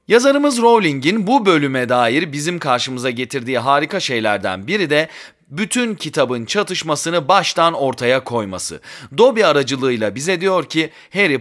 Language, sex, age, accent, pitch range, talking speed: Turkish, male, 30-49, native, 125-180 Hz, 125 wpm